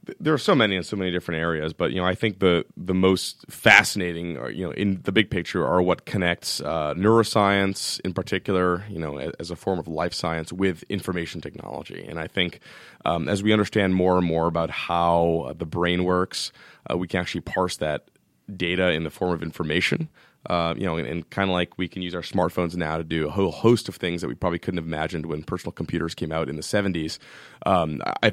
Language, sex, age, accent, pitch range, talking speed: English, male, 30-49, American, 80-95 Hz, 225 wpm